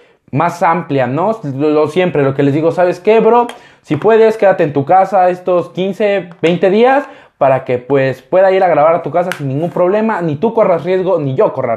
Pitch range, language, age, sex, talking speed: 145-195 Hz, Spanish, 20-39, male, 210 wpm